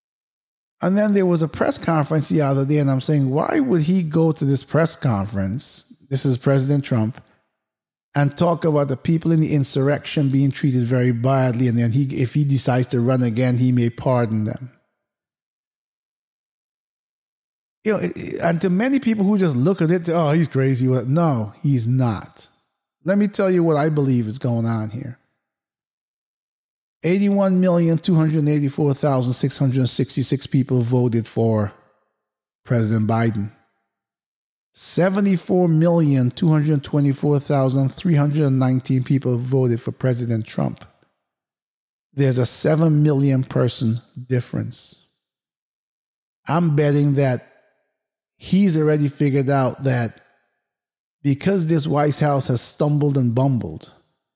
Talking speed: 125 wpm